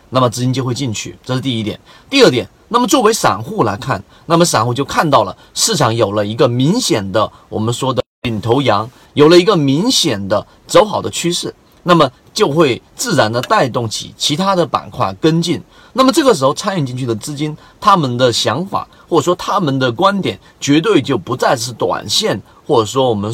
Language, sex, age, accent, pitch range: Chinese, male, 30-49, native, 120-165 Hz